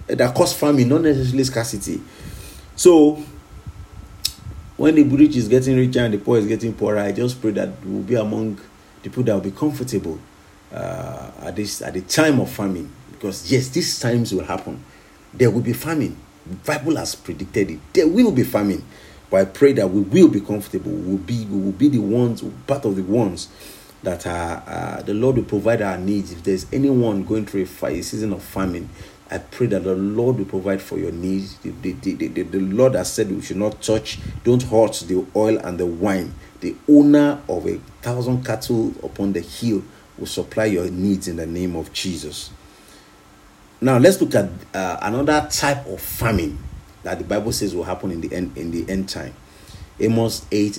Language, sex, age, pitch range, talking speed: English, male, 40-59, 95-125 Hz, 195 wpm